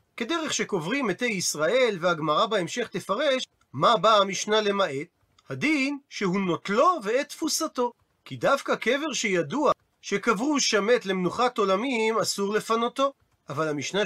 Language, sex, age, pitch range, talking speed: Hebrew, male, 40-59, 190-270 Hz, 130 wpm